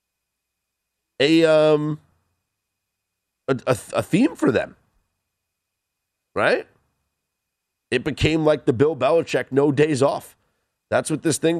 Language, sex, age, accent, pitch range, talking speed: English, male, 30-49, American, 95-155 Hz, 110 wpm